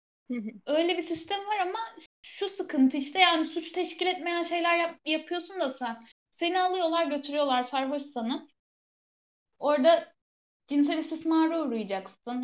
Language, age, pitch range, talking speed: Turkish, 10-29, 265-335 Hz, 125 wpm